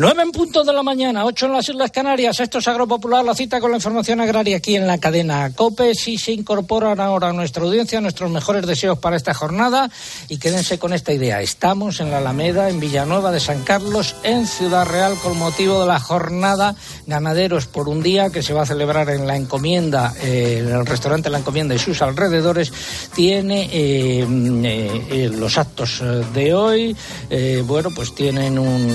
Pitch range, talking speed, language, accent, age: 140-210 Hz, 195 wpm, Spanish, Spanish, 60-79